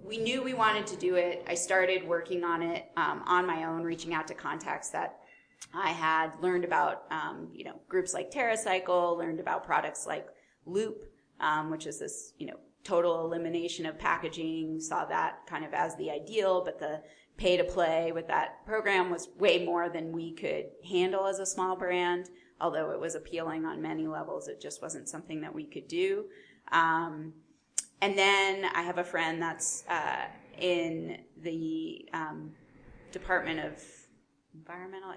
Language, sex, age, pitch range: English, female, 20-39, 165-190 Hz